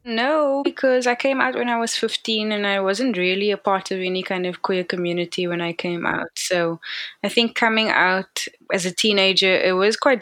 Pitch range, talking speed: 180-205 Hz, 210 wpm